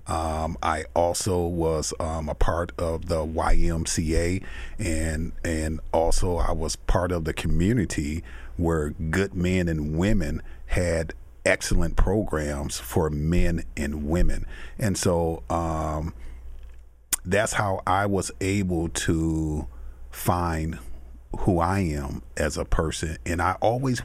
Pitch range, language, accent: 80-90 Hz, English, American